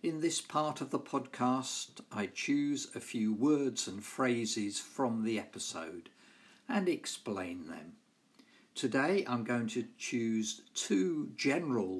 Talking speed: 130 wpm